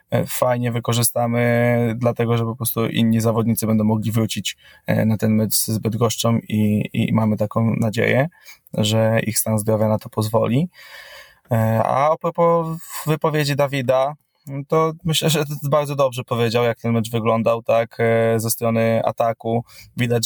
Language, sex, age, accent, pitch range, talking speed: Polish, male, 20-39, native, 110-125 Hz, 140 wpm